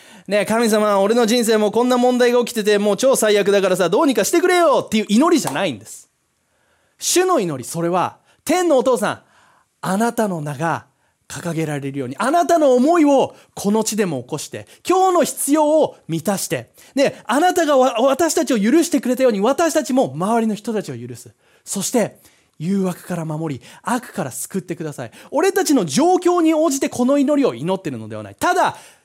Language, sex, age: Japanese, male, 30-49